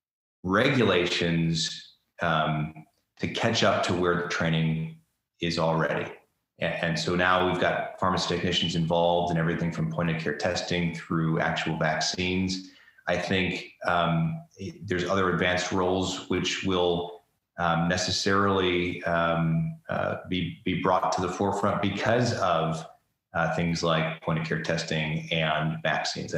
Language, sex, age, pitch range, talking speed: English, male, 30-49, 80-95 Hz, 140 wpm